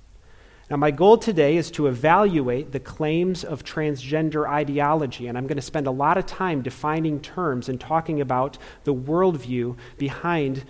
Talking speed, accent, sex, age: 165 wpm, American, male, 40-59